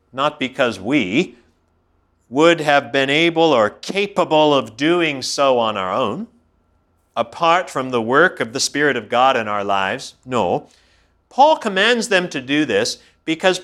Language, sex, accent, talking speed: English, male, American, 155 wpm